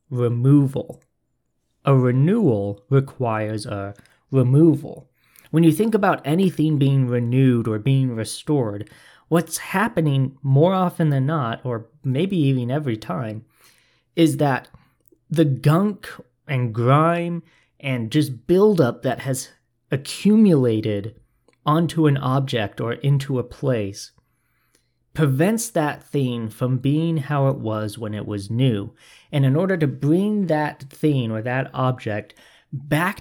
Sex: male